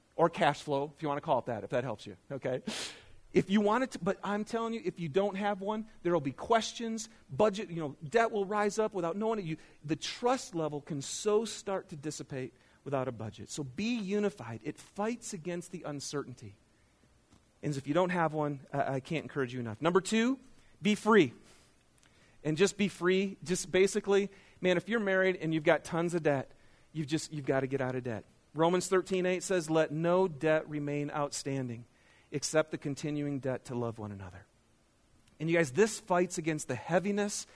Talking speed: 205 wpm